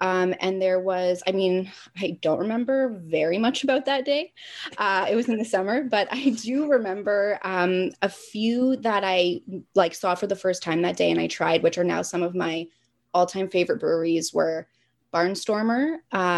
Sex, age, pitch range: female, 20-39, 175-220 Hz